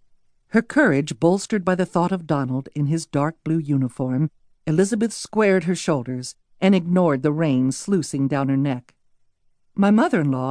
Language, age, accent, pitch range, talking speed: English, 50-69, American, 135-175 Hz, 155 wpm